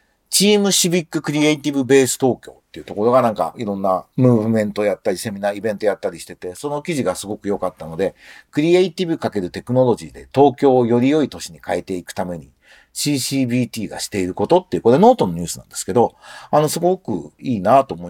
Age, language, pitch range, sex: 50-69, Japanese, 100-150 Hz, male